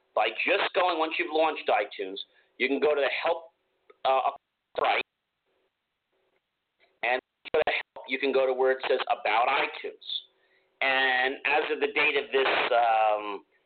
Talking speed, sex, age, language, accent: 170 wpm, male, 50-69, English, American